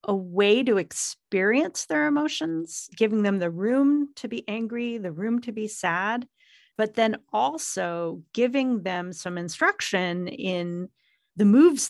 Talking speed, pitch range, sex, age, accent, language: 140 wpm, 180-245 Hz, female, 40-59, American, English